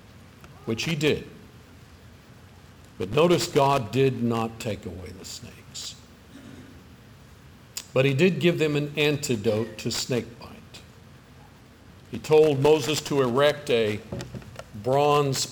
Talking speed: 110 wpm